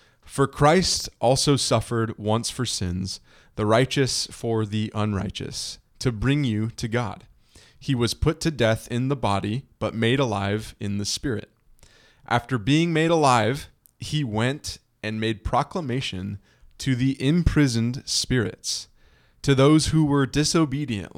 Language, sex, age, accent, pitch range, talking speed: English, male, 20-39, American, 105-135 Hz, 140 wpm